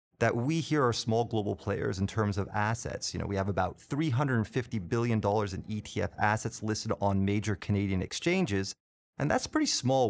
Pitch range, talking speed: 100-130 Hz, 180 wpm